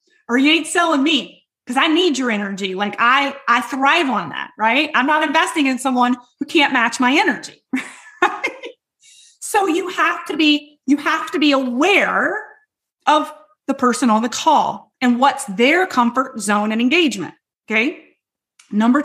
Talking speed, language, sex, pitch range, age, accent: 165 wpm, English, female, 225-310 Hz, 30-49, American